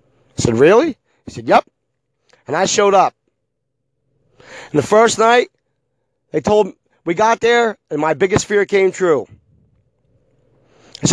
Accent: American